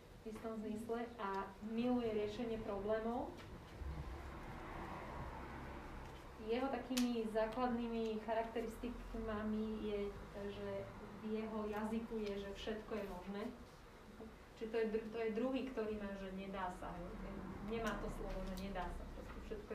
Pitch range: 200-230 Hz